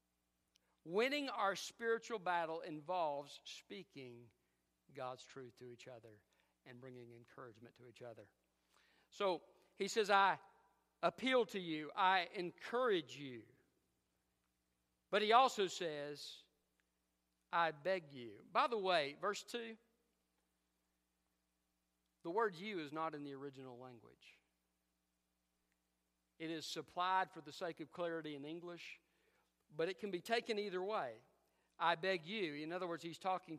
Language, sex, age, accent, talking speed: English, male, 50-69, American, 130 wpm